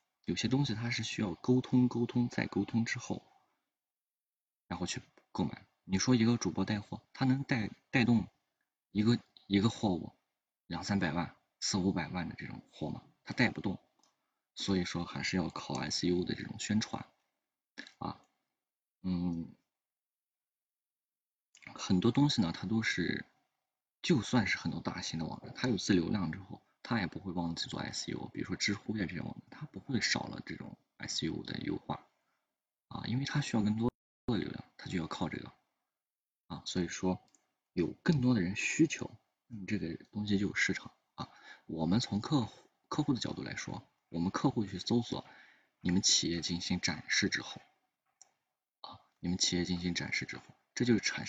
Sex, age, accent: male, 20-39, native